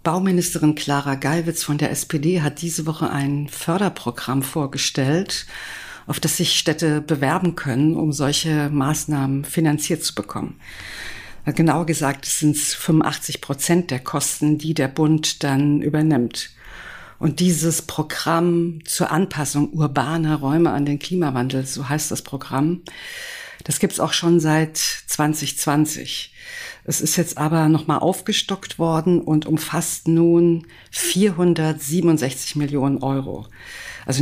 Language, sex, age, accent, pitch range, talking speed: German, female, 50-69, German, 145-170 Hz, 130 wpm